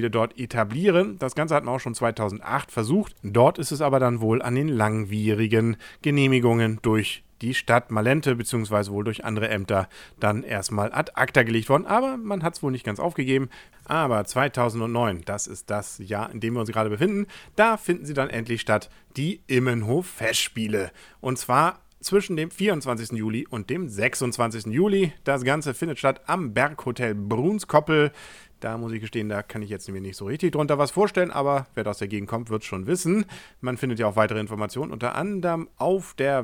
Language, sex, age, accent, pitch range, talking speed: English, male, 40-59, German, 110-150 Hz, 190 wpm